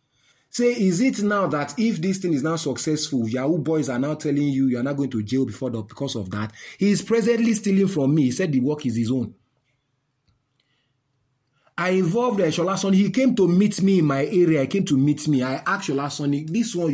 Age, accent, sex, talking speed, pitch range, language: 30-49, Nigerian, male, 225 wpm, 135-210 Hz, English